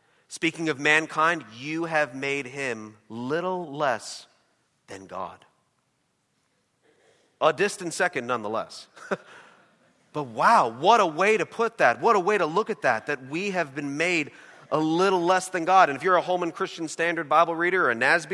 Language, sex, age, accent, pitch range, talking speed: English, male, 40-59, American, 145-185 Hz, 170 wpm